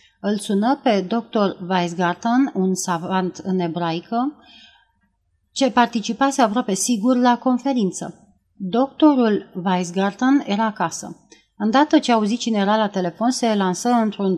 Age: 30-49